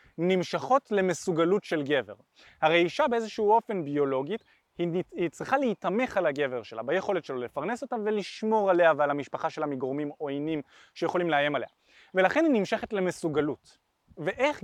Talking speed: 140 wpm